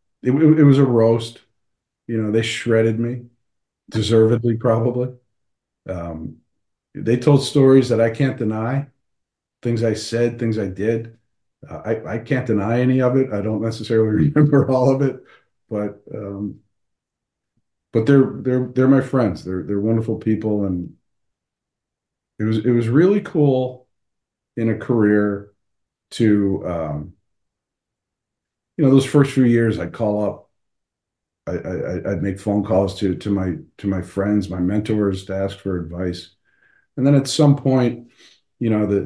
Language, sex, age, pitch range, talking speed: English, male, 50-69, 100-120 Hz, 155 wpm